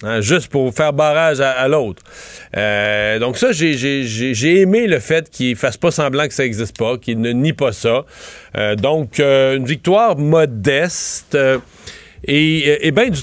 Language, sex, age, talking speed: French, male, 40-59, 190 wpm